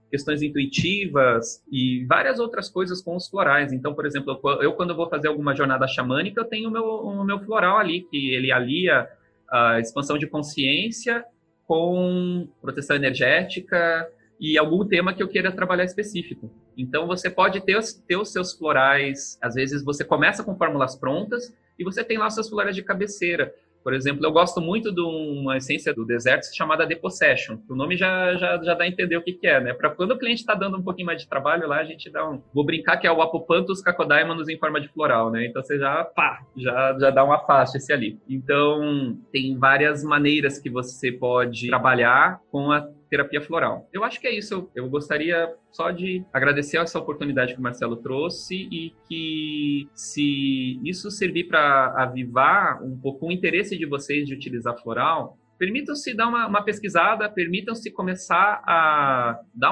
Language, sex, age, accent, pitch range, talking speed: Portuguese, male, 30-49, Brazilian, 140-185 Hz, 185 wpm